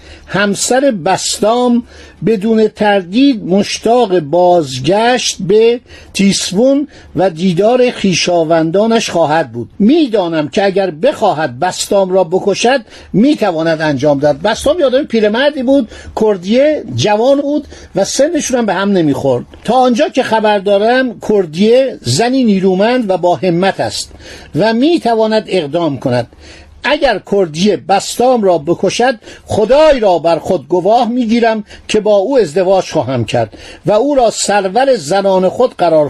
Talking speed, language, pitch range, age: 130 wpm, Persian, 180-245 Hz, 50-69